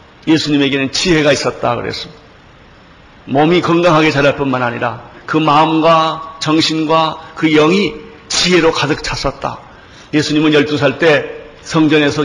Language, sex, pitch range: Korean, male, 135-155 Hz